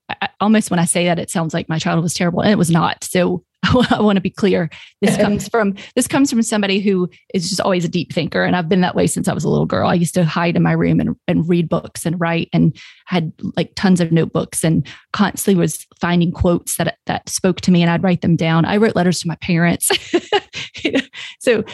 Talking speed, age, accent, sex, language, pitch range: 245 wpm, 30-49, American, female, English, 170-195 Hz